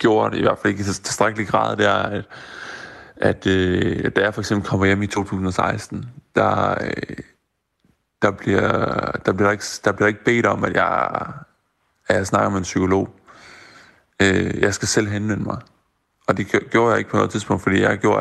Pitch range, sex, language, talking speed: 95-105 Hz, male, Danish, 190 wpm